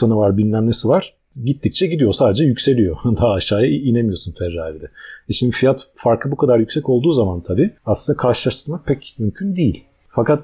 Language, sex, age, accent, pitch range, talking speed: Turkish, male, 40-59, native, 100-140 Hz, 160 wpm